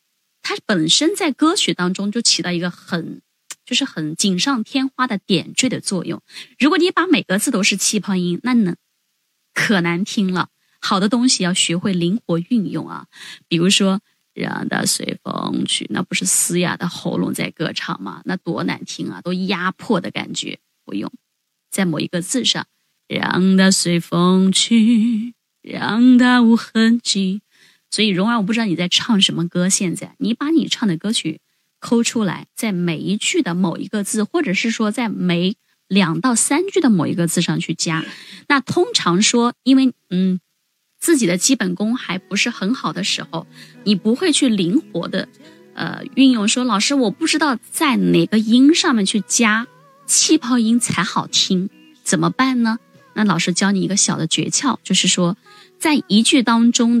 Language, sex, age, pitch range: Chinese, female, 20-39, 180-245 Hz